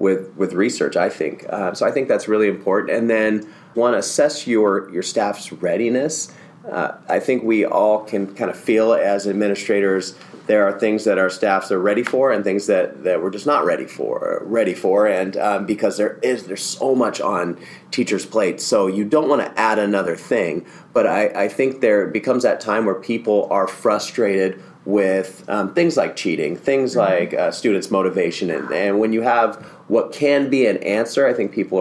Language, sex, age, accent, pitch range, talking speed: English, male, 30-49, American, 100-115 Hz, 200 wpm